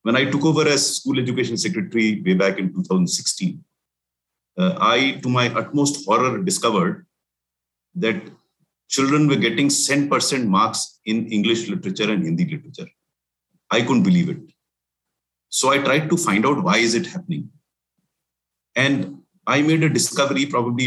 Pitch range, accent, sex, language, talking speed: 110-155 Hz, Indian, male, English, 145 wpm